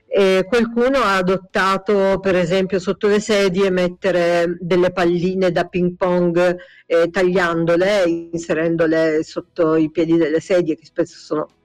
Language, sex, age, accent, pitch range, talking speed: Italian, female, 50-69, native, 175-205 Hz, 130 wpm